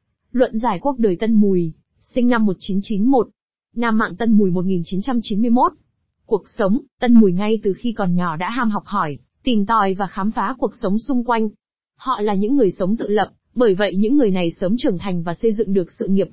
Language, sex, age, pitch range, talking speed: Vietnamese, female, 20-39, 195-245 Hz, 210 wpm